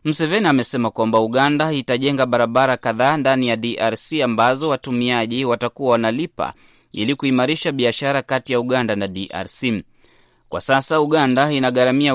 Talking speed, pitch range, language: 130 wpm, 115-140 Hz, Swahili